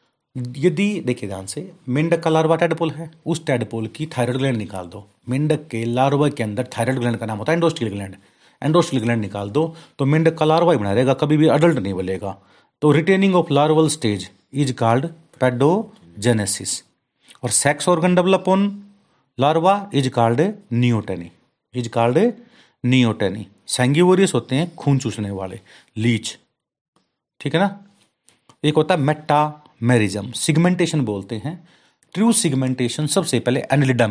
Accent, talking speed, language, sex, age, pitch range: native, 75 wpm, Hindi, male, 40-59, 110-160 Hz